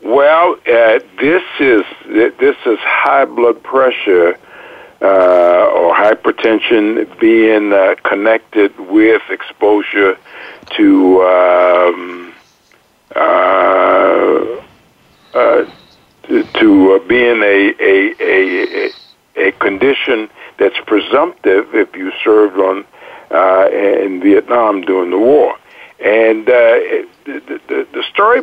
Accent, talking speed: American, 100 wpm